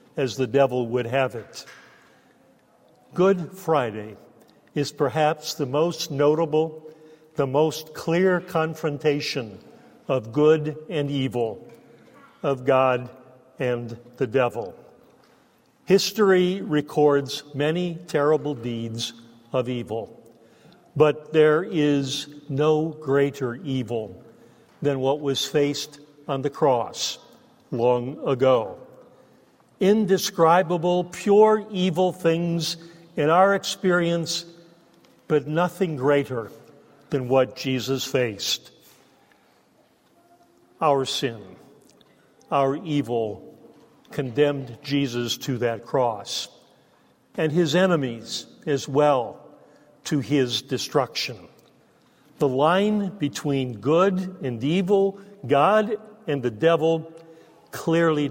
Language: English